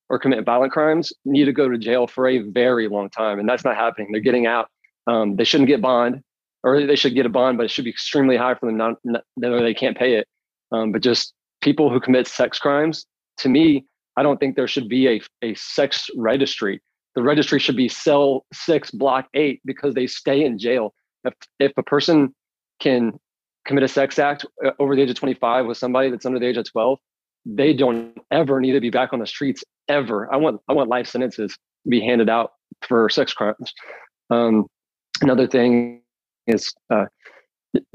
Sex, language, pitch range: male, English, 120-140 Hz